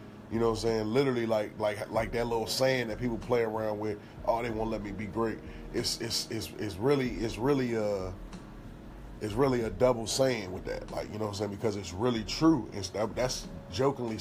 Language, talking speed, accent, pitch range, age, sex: English, 225 wpm, American, 95-115 Hz, 20-39, male